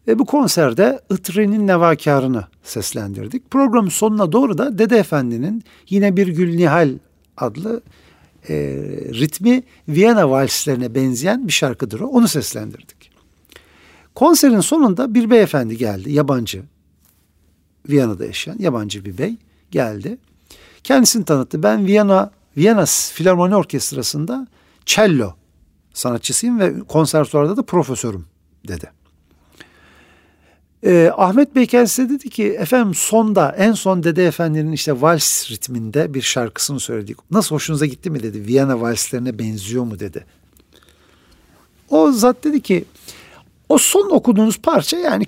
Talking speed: 120 wpm